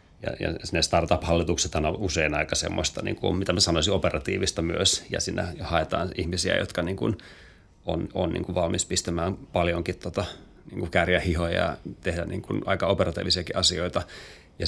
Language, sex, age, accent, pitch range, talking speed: Finnish, male, 30-49, native, 85-95 Hz, 160 wpm